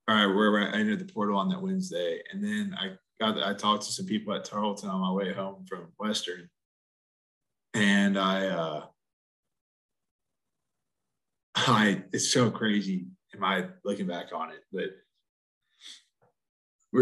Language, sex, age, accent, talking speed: English, male, 20-39, American, 150 wpm